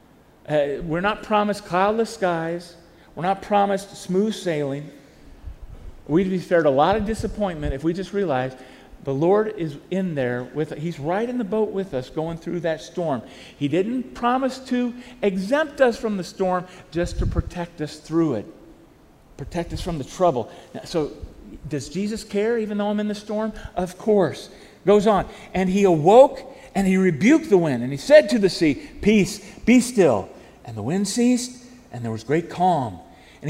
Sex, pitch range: male, 170-255 Hz